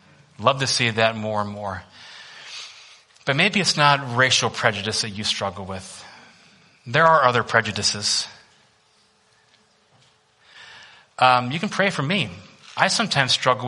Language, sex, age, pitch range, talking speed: English, male, 30-49, 120-185 Hz, 130 wpm